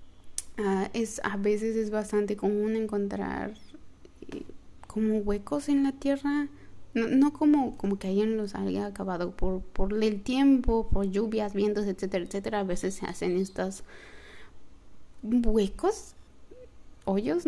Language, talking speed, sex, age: Spanish, 135 wpm, female, 20-39